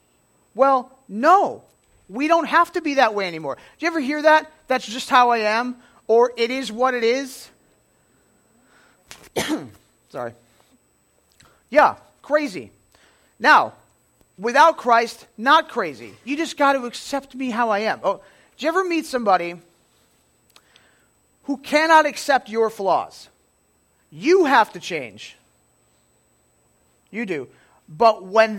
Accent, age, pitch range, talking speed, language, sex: American, 50-69, 165-265 Hz, 130 wpm, English, male